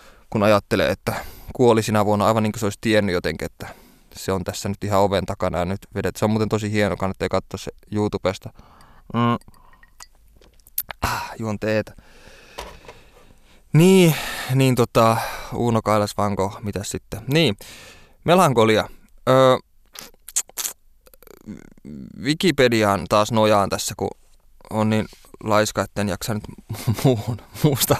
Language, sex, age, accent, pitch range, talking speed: Finnish, male, 20-39, native, 100-115 Hz, 120 wpm